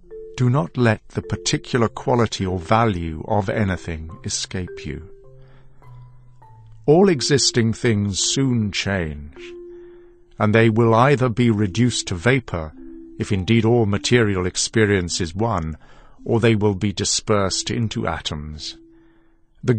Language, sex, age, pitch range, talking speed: Hindi, male, 50-69, 90-120 Hz, 120 wpm